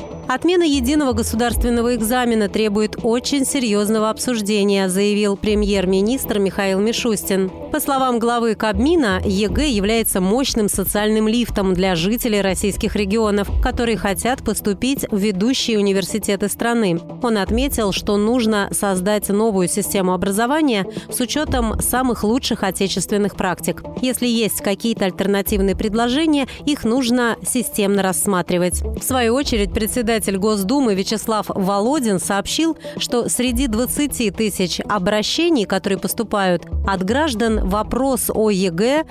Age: 30-49